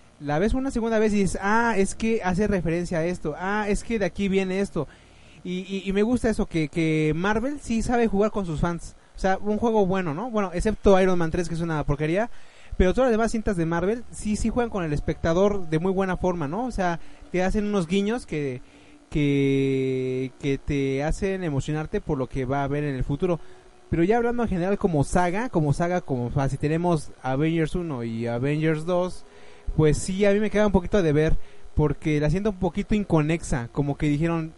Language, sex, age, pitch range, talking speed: Spanish, male, 30-49, 155-210 Hz, 220 wpm